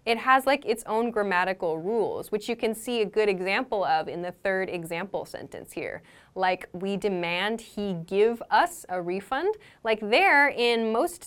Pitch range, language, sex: 195-250 Hz, English, female